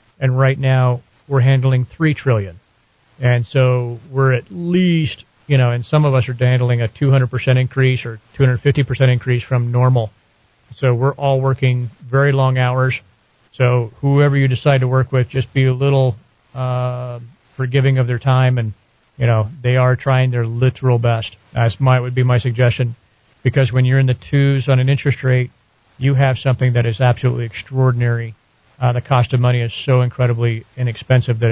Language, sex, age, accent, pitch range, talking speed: English, male, 40-59, American, 120-130 Hz, 175 wpm